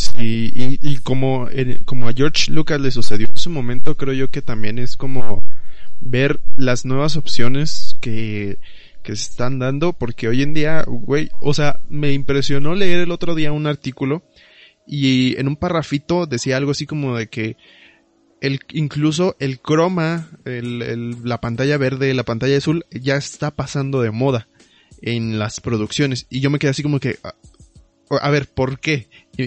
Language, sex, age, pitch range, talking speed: Spanish, male, 20-39, 125-155 Hz, 170 wpm